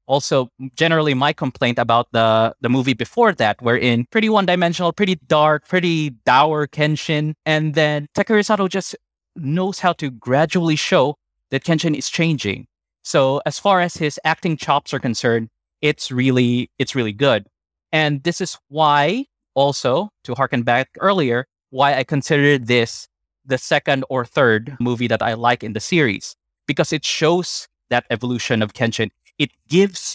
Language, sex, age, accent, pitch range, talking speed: English, male, 20-39, Filipino, 130-165 Hz, 155 wpm